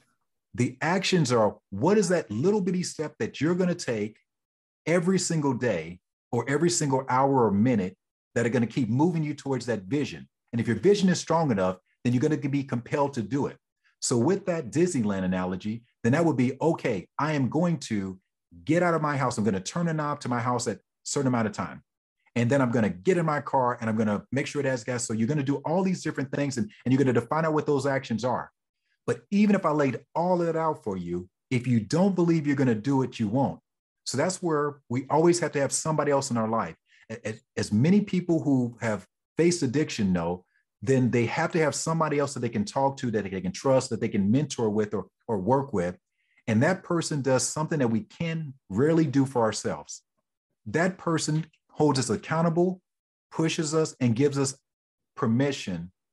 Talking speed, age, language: 225 wpm, 40-59, English